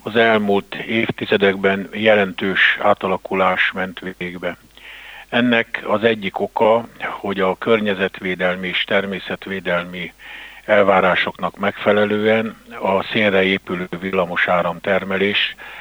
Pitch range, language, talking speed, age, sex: 85-100 Hz, Hungarian, 85 wpm, 50-69, male